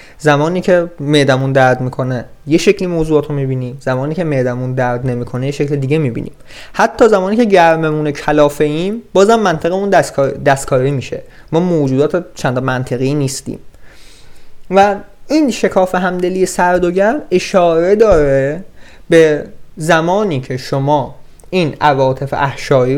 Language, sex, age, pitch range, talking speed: Persian, male, 20-39, 135-185 Hz, 135 wpm